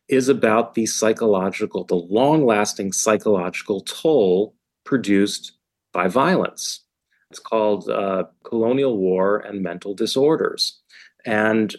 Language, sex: English, male